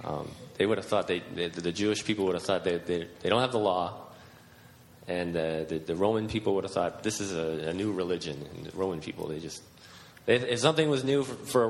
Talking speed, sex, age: 250 wpm, male, 30-49